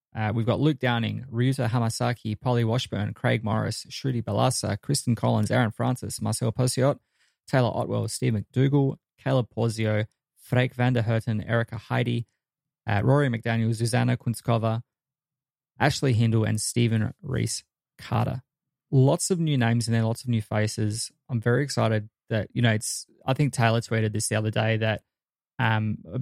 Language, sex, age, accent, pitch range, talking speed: English, male, 20-39, Australian, 110-125 Hz, 160 wpm